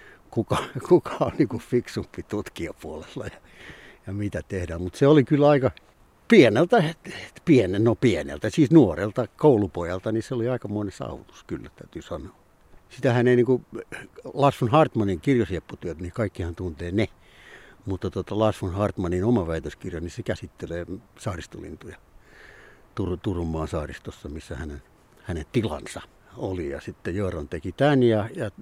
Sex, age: male, 60-79